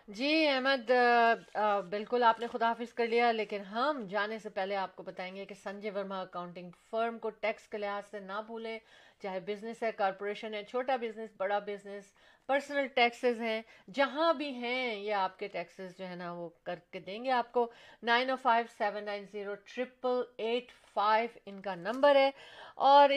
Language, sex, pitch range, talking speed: Urdu, female, 205-250 Hz, 180 wpm